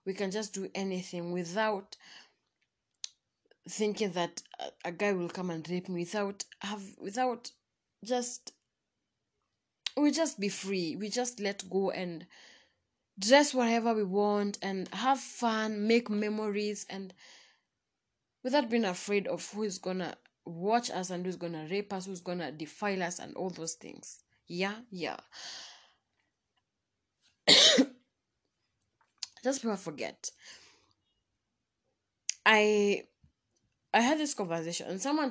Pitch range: 175-220 Hz